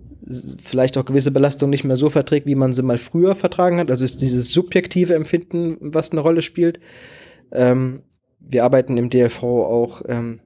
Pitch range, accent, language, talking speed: 125-150 Hz, German, German, 180 wpm